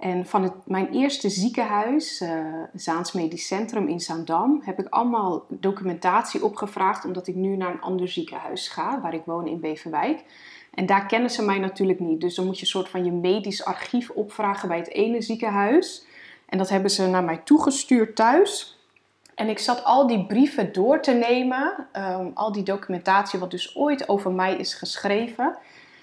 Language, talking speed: Dutch, 185 wpm